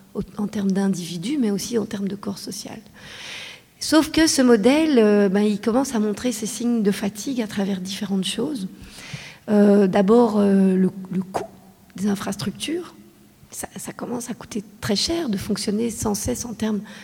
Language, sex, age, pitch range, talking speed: French, female, 40-59, 200-240 Hz, 165 wpm